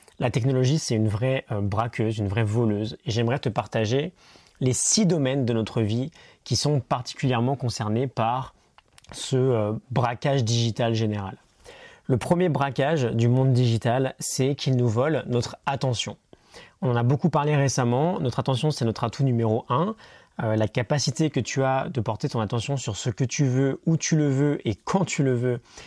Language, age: French, 30-49